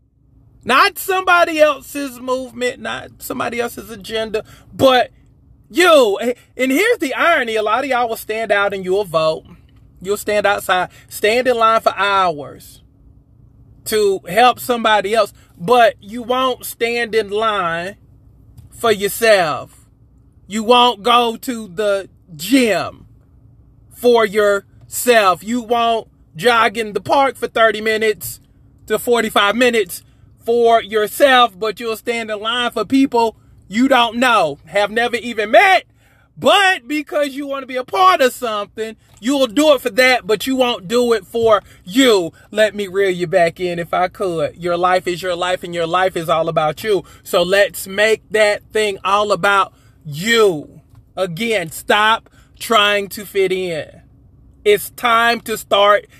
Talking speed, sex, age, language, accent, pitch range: 150 wpm, male, 30-49, English, American, 190-245 Hz